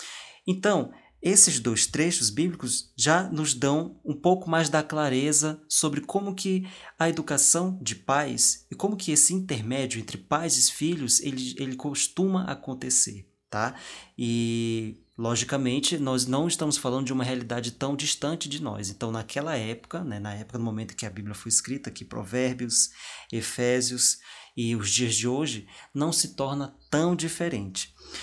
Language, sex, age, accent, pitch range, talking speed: Portuguese, male, 20-39, Brazilian, 120-160 Hz, 155 wpm